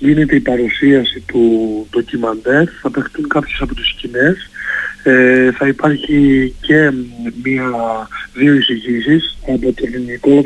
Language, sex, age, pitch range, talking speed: Greek, male, 60-79, 125-165 Hz, 120 wpm